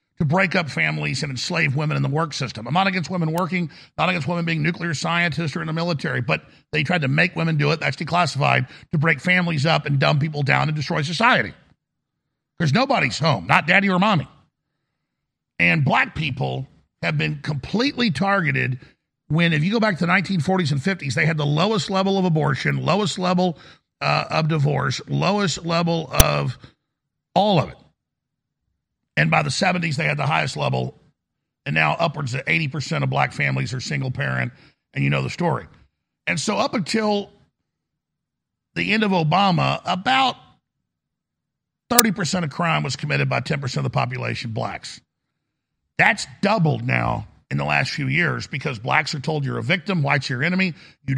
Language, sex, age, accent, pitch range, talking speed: English, male, 50-69, American, 145-180 Hz, 180 wpm